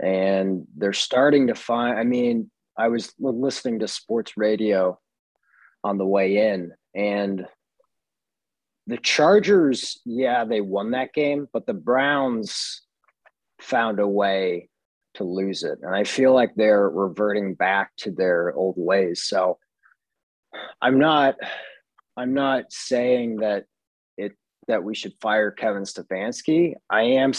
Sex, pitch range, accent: male, 100-125 Hz, American